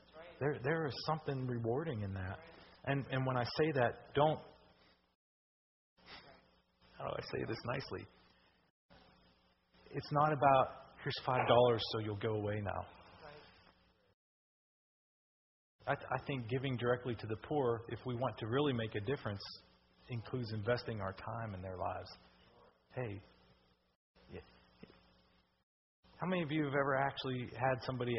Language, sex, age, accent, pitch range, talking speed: English, male, 40-59, American, 110-140 Hz, 135 wpm